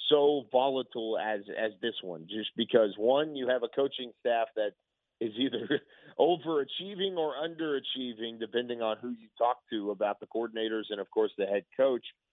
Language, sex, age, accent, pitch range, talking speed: English, male, 40-59, American, 110-135 Hz, 170 wpm